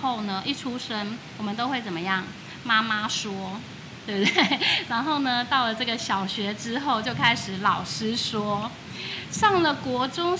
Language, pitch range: Chinese, 195-255 Hz